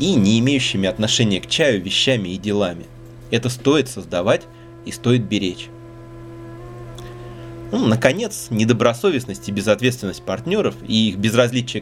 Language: Russian